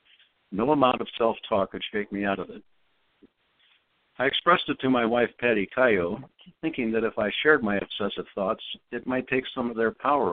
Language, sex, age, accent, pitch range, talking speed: English, male, 60-79, American, 105-135 Hz, 190 wpm